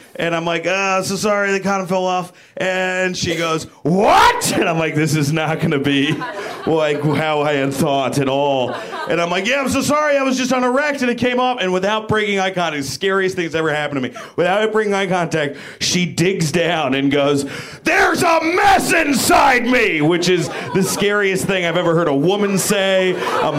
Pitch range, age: 170-245 Hz, 40-59